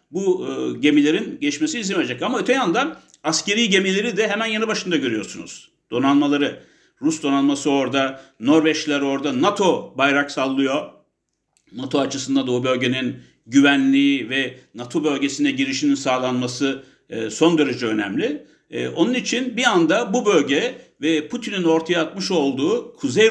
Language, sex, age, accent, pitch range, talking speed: English, male, 60-79, Turkish, 150-245 Hz, 135 wpm